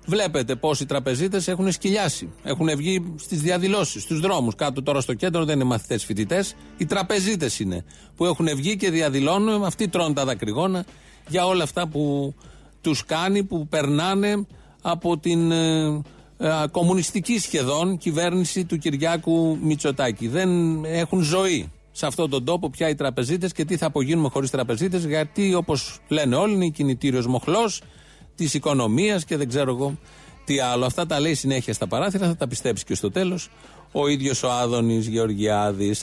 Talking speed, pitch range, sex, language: 160 wpm, 125-175 Hz, male, Greek